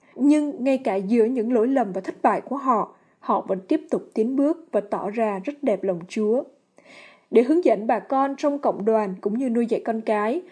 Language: Vietnamese